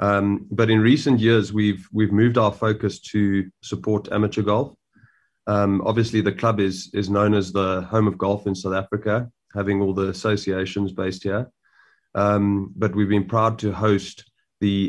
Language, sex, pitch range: English, male, 100-110 Hz